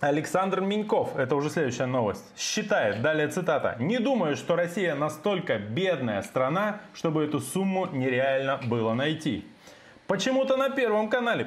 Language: Russian